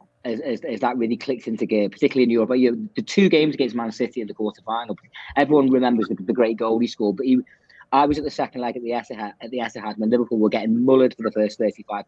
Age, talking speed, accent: 30-49, 255 wpm, British